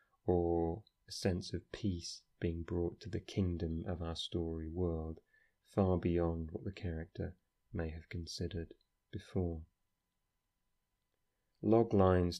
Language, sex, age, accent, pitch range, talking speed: English, male, 30-49, British, 80-95 Hz, 115 wpm